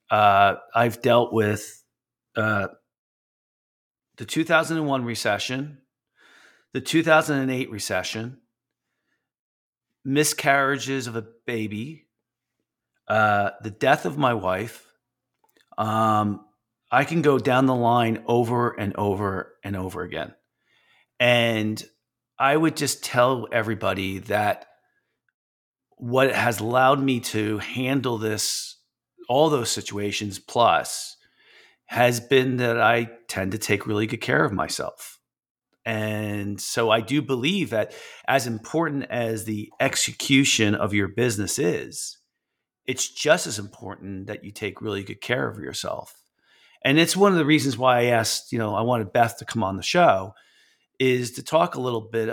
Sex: male